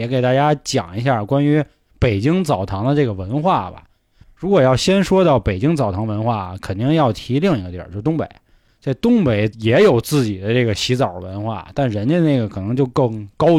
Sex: male